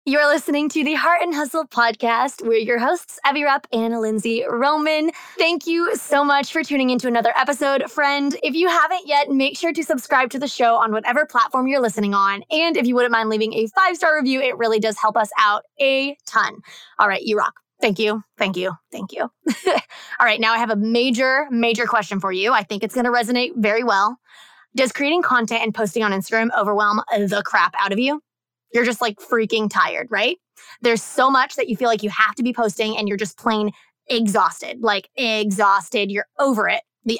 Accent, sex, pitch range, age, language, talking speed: American, female, 220-275 Hz, 20-39, English, 210 wpm